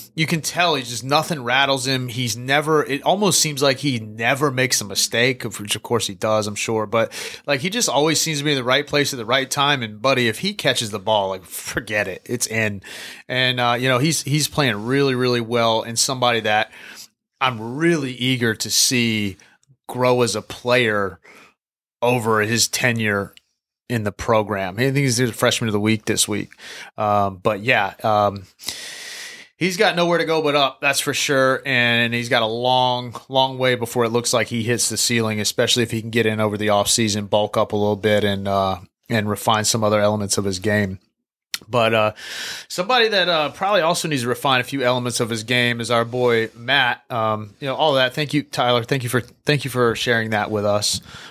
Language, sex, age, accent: English, male, 30-49, American